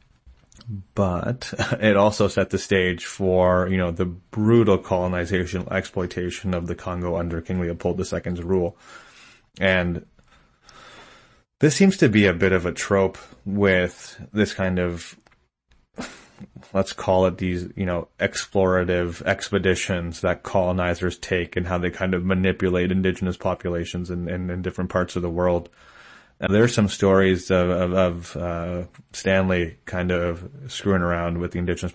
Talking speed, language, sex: 150 wpm, English, male